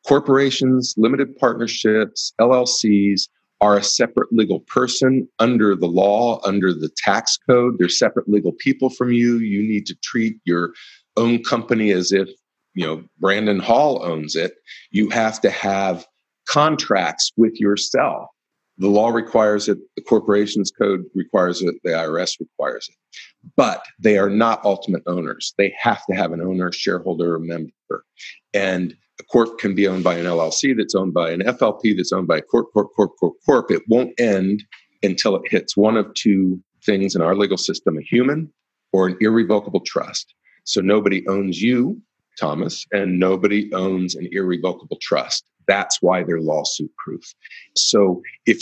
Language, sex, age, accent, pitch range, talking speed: English, male, 40-59, American, 95-115 Hz, 165 wpm